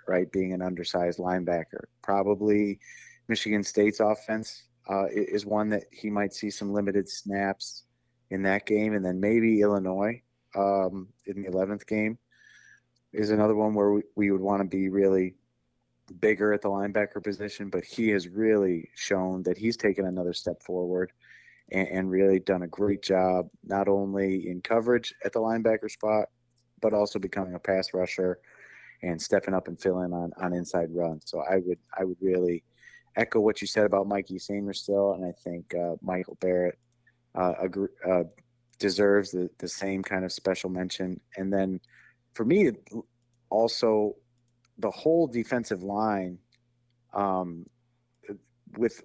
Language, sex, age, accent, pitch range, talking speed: English, male, 30-49, American, 95-105 Hz, 160 wpm